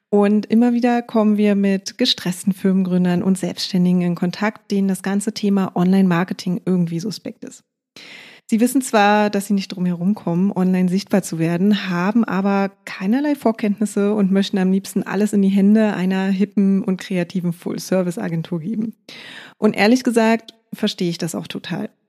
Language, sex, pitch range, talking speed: German, female, 180-215 Hz, 160 wpm